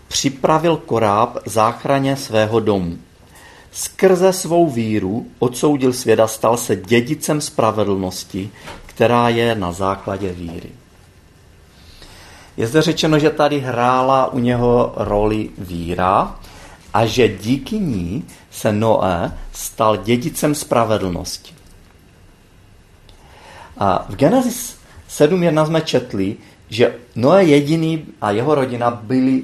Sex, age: male, 40-59